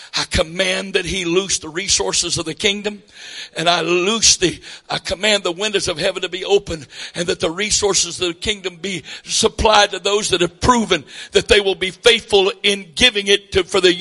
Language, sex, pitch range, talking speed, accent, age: English, male, 210-275 Hz, 205 wpm, American, 60-79